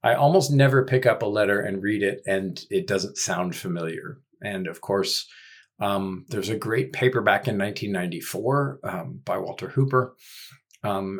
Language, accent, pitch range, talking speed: English, American, 95-125 Hz, 165 wpm